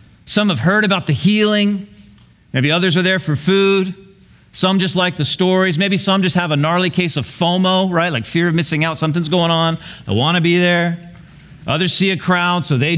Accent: American